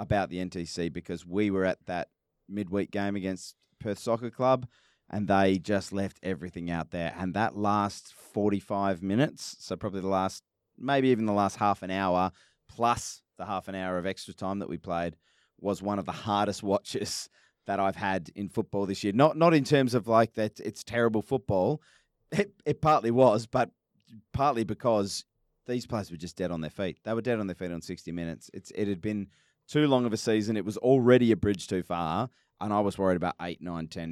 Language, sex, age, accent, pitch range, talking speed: English, male, 30-49, Australian, 90-105 Hz, 210 wpm